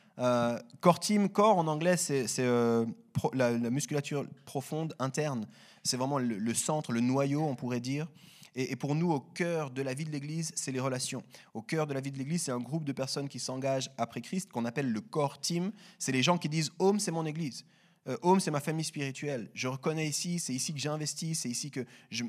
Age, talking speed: 30-49, 220 wpm